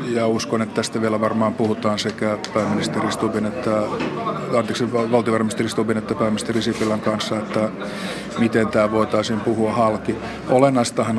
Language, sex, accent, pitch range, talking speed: Finnish, male, native, 110-115 Hz, 130 wpm